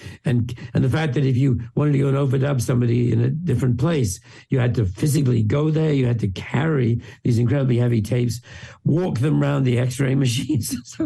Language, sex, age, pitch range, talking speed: English, male, 60-79, 115-135 Hz, 200 wpm